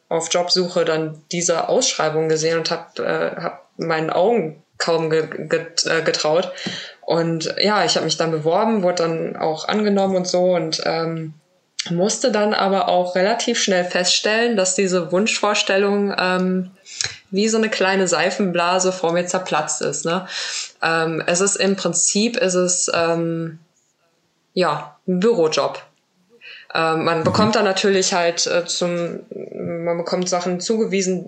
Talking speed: 145 wpm